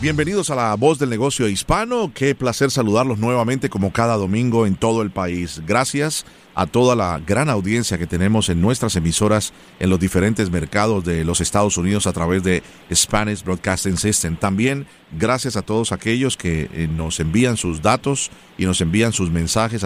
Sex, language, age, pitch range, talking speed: male, Spanish, 40-59, 90-115 Hz, 175 wpm